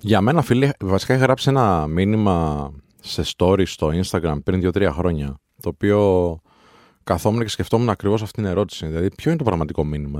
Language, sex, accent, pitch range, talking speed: Greek, male, native, 85-115 Hz, 175 wpm